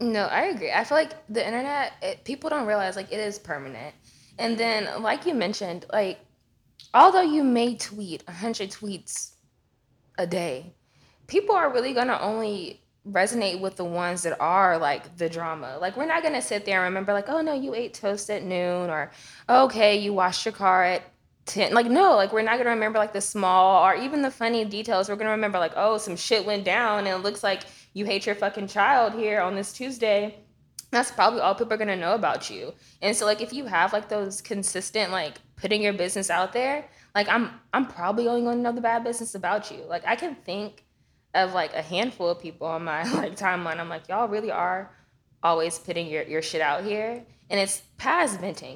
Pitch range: 180-230 Hz